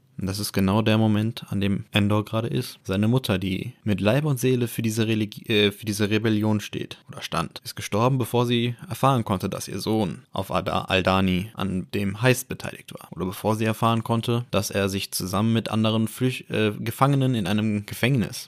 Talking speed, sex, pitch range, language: 200 wpm, male, 105-130 Hz, German